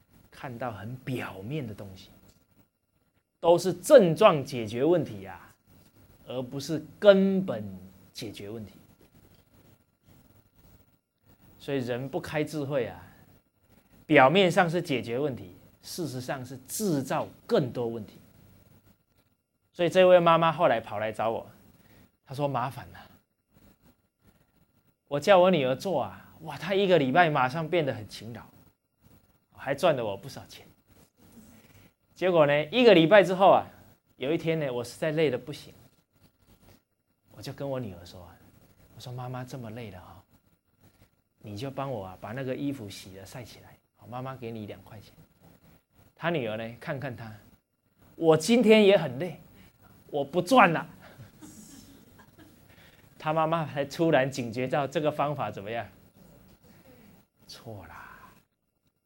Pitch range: 105-160 Hz